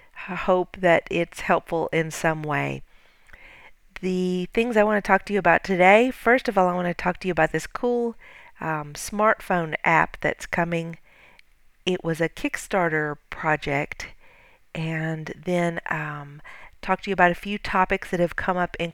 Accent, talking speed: American, 170 wpm